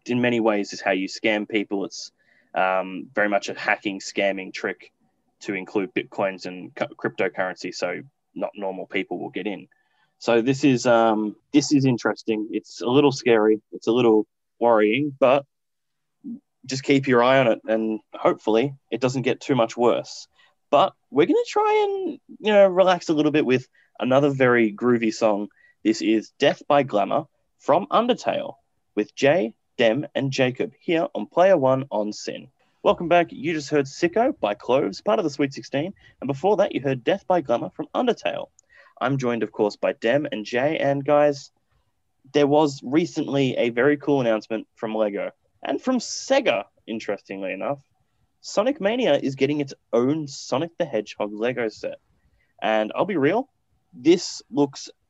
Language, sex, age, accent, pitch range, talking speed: English, male, 10-29, Australian, 110-150 Hz, 170 wpm